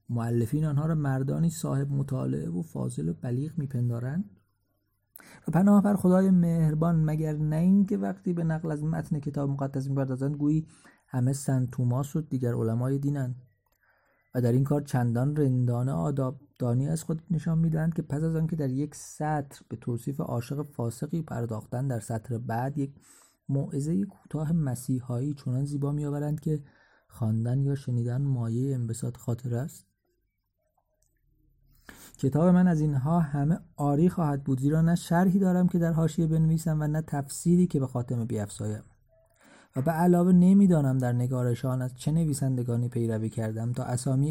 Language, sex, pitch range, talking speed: Persian, male, 125-160 Hz, 150 wpm